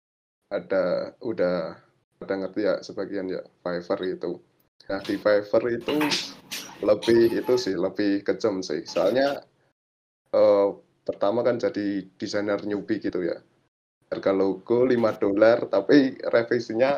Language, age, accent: Indonesian, 20-39, native